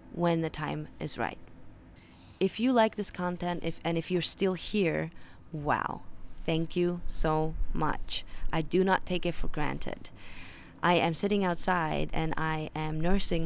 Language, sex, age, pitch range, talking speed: English, female, 20-39, 155-180 Hz, 160 wpm